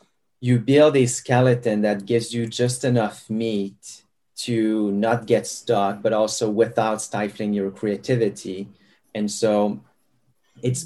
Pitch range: 105-125 Hz